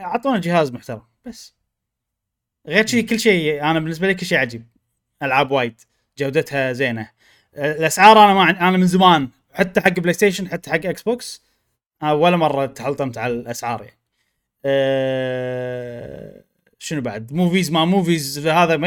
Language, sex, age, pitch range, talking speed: Arabic, male, 20-39, 140-215 Hz, 150 wpm